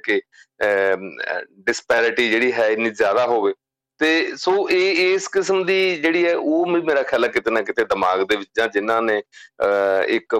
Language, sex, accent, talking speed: English, male, Indian, 105 wpm